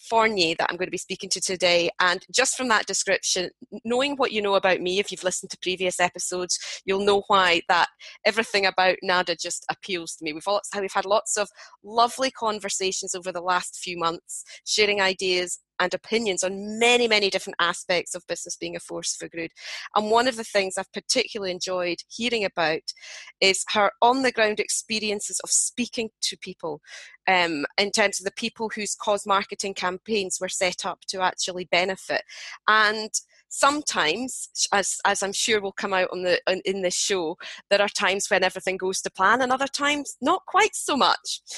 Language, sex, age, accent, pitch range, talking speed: English, female, 30-49, British, 180-220 Hz, 185 wpm